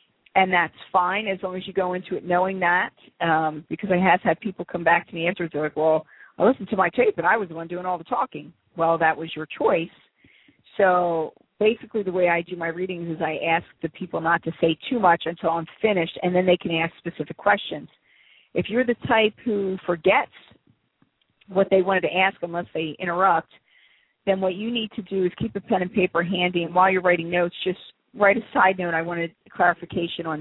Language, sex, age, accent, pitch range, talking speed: English, female, 40-59, American, 165-195 Hz, 225 wpm